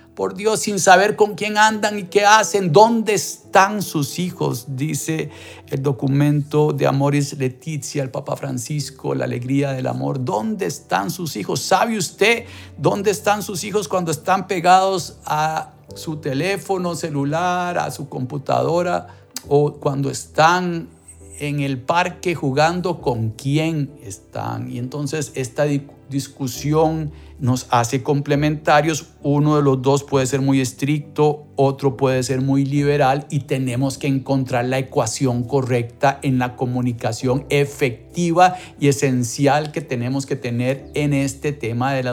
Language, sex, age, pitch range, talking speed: Spanish, male, 50-69, 135-175 Hz, 140 wpm